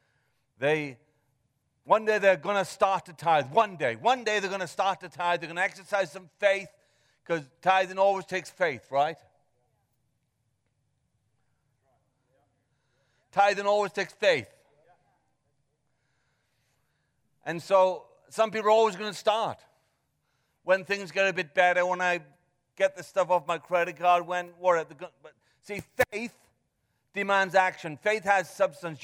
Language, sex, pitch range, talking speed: English, male, 145-200 Hz, 145 wpm